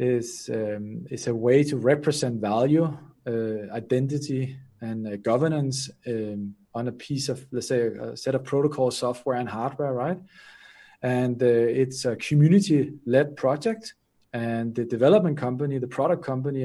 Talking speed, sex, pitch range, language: 150 wpm, male, 120-150 Hz, English